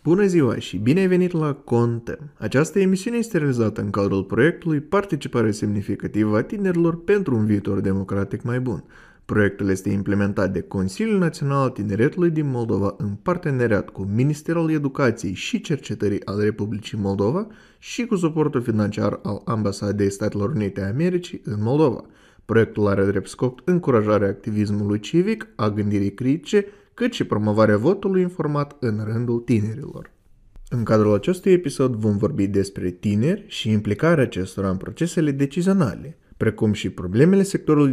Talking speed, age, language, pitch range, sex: 145 wpm, 20-39, Romanian, 100-155 Hz, male